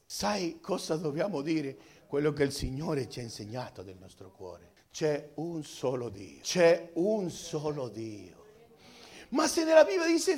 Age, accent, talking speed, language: 50-69, native, 155 wpm, Italian